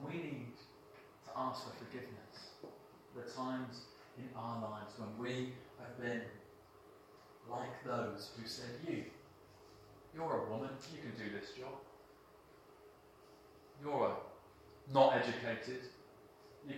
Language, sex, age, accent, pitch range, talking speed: English, male, 30-49, British, 105-130 Hz, 115 wpm